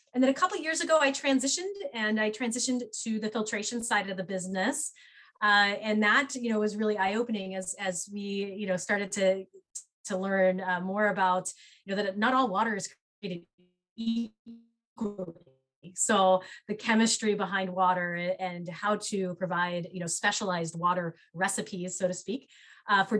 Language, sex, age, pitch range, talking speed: English, female, 20-39, 180-215 Hz, 175 wpm